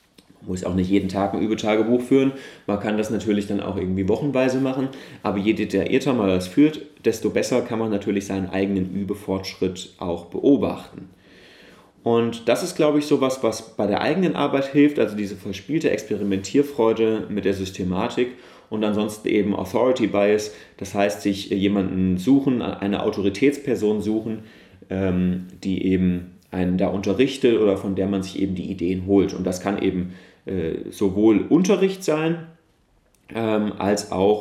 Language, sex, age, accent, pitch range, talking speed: German, male, 30-49, German, 95-110 Hz, 155 wpm